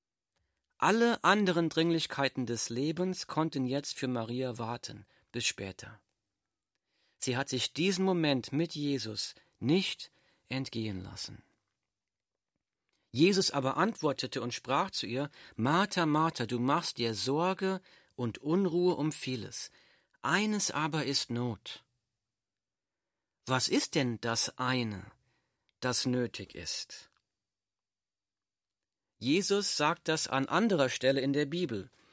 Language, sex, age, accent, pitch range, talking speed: German, male, 40-59, German, 120-165 Hz, 110 wpm